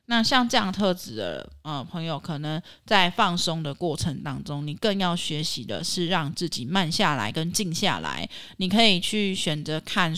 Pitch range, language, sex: 160-205 Hz, Chinese, female